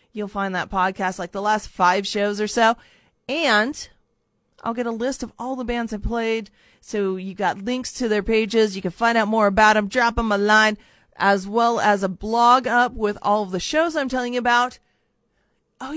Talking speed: 210 wpm